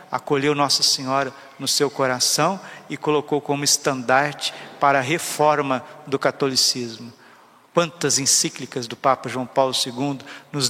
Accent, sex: Brazilian, male